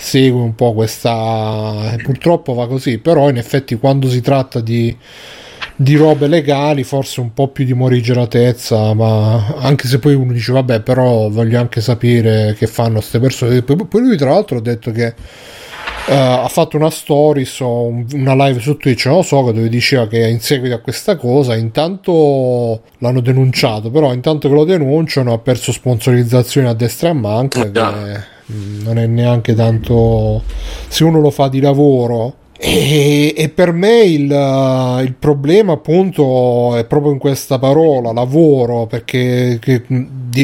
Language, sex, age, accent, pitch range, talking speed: Italian, male, 30-49, native, 120-145 Hz, 165 wpm